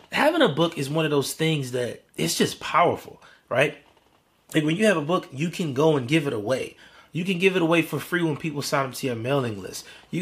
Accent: American